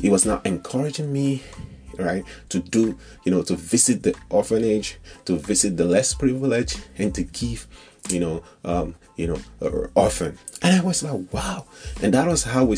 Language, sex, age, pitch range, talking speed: English, male, 30-49, 90-130 Hz, 185 wpm